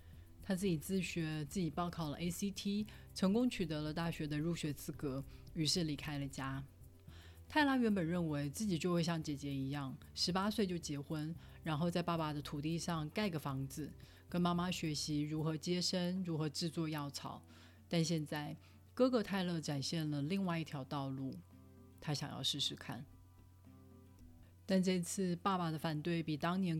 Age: 30-49